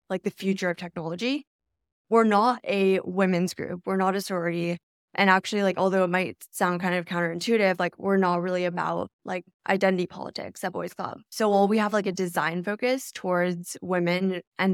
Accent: American